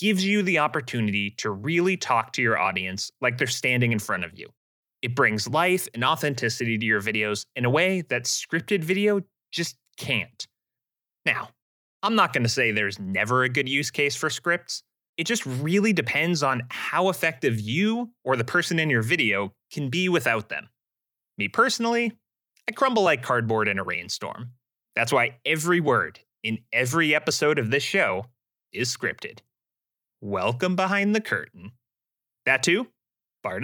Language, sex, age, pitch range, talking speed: English, male, 30-49, 115-170 Hz, 165 wpm